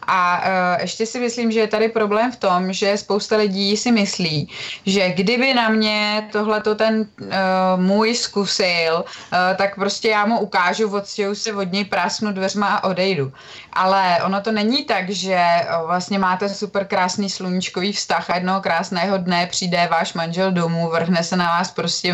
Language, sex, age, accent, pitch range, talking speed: Czech, female, 20-39, native, 180-215 Hz, 175 wpm